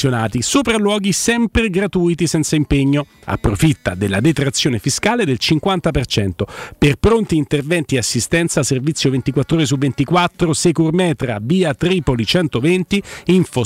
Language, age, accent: Italian, 50-69, native